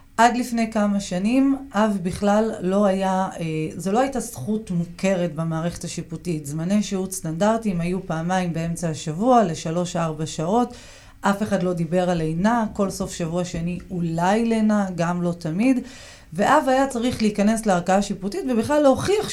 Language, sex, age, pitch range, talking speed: Hebrew, female, 30-49, 175-235 Hz, 150 wpm